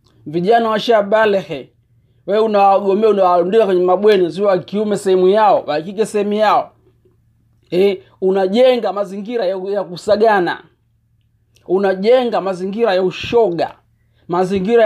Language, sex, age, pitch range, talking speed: Swahili, male, 40-59, 155-220 Hz, 95 wpm